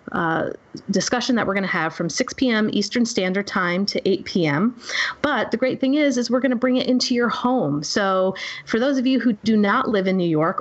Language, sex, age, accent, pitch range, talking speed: English, female, 30-49, American, 175-220 Hz, 240 wpm